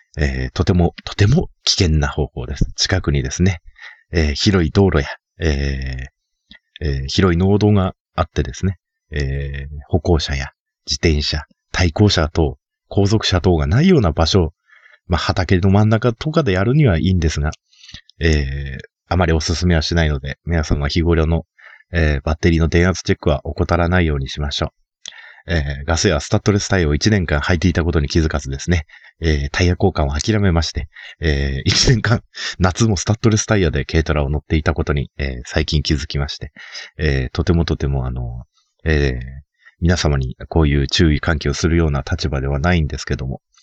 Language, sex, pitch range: Japanese, male, 70-95 Hz